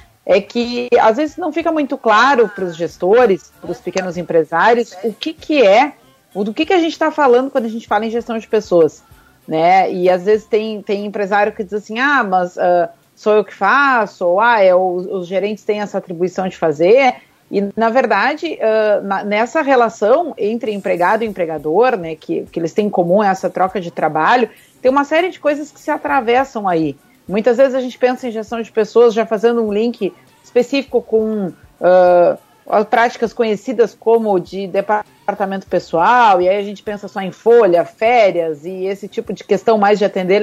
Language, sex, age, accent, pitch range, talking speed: Portuguese, female, 40-59, Brazilian, 190-245 Hz, 195 wpm